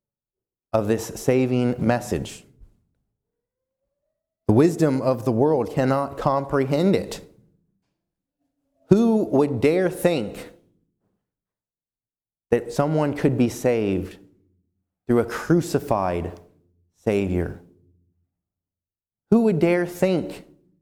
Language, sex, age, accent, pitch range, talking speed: English, male, 30-49, American, 120-165 Hz, 85 wpm